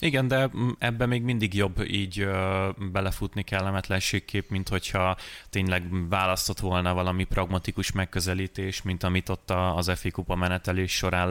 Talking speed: 135 wpm